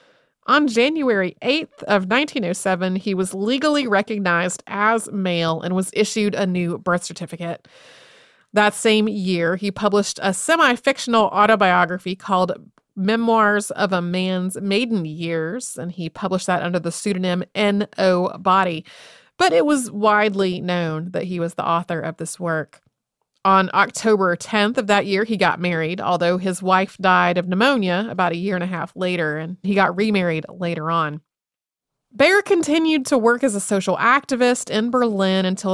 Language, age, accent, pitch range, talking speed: English, 30-49, American, 175-220 Hz, 160 wpm